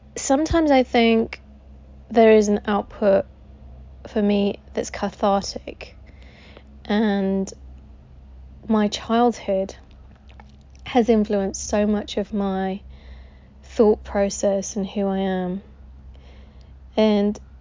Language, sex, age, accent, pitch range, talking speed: English, female, 20-39, British, 180-215 Hz, 90 wpm